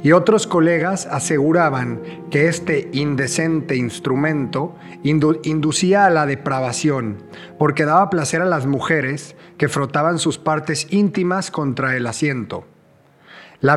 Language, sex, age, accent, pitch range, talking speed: English, male, 40-59, Mexican, 140-175 Hz, 120 wpm